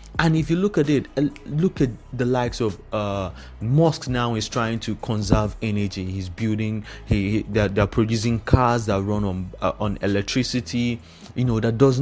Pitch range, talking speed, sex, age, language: 100-125 Hz, 185 wpm, male, 30-49, English